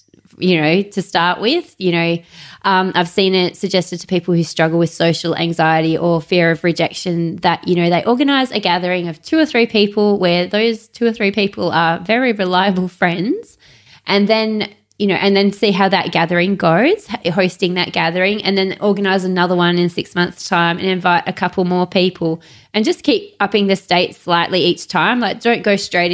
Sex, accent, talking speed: female, Australian, 200 wpm